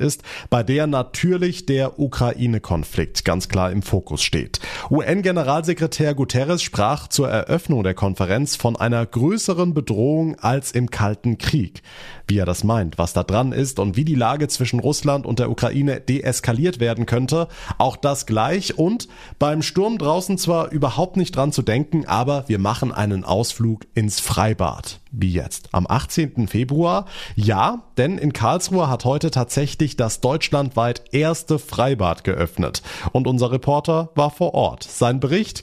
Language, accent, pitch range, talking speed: German, German, 105-150 Hz, 155 wpm